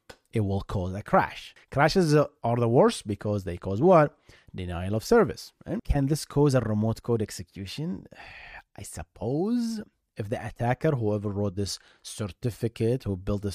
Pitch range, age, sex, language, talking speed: 100-150 Hz, 30-49, male, English, 160 wpm